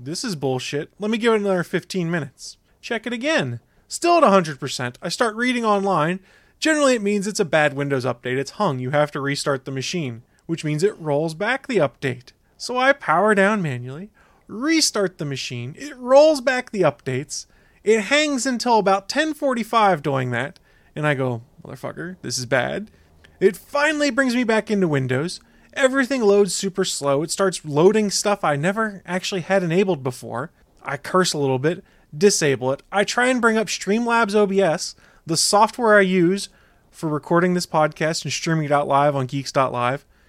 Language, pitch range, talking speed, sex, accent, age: English, 145-220 Hz, 180 wpm, male, American, 30-49